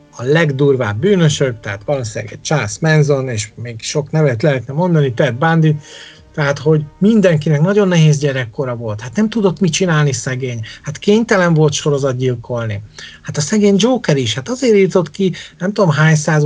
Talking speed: 165 wpm